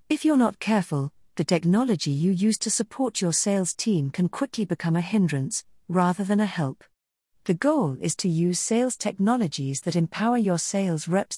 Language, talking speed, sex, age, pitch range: English, 180 wpm, female, 40-59, 155-215 Hz